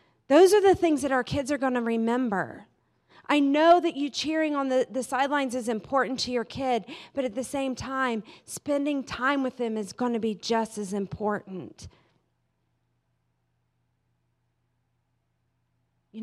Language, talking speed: English, 155 wpm